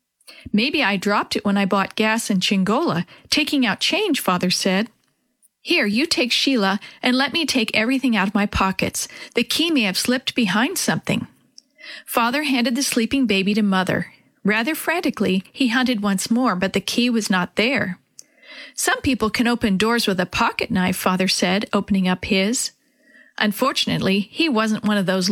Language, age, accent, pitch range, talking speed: English, 40-59, American, 195-260 Hz, 175 wpm